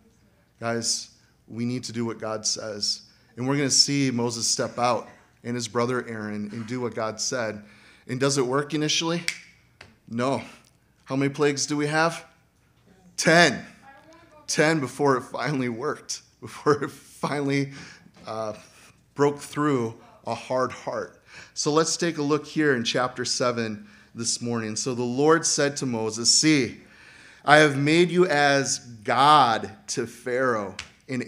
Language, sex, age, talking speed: English, male, 30-49, 150 wpm